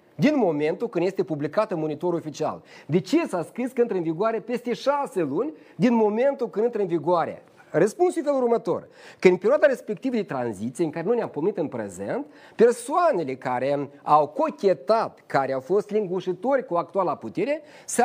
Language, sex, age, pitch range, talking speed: Romanian, male, 40-59, 170-265 Hz, 175 wpm